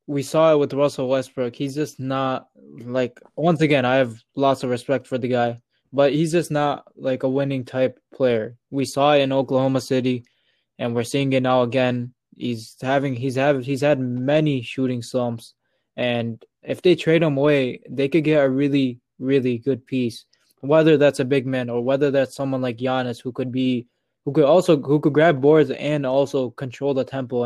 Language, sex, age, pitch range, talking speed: English, male, 20-39, 125-145 Hz, 190 wpm